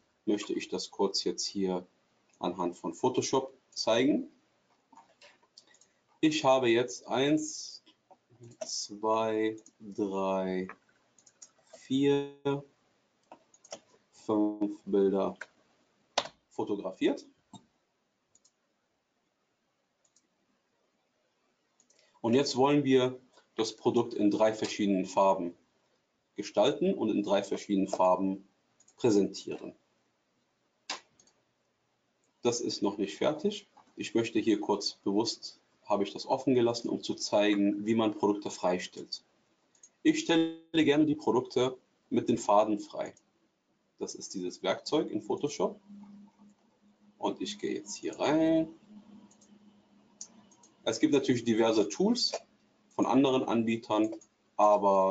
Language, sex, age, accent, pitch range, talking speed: German, male, 40-59, German, 105-155 Hz, 95 wpm